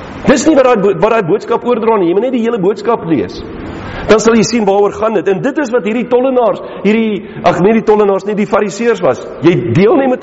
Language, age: English, 50-69